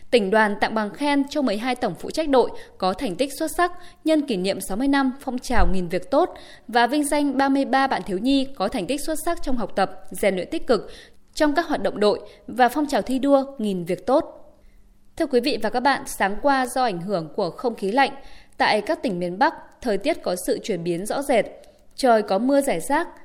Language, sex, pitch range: Vietnamese, female, 205-280 Hz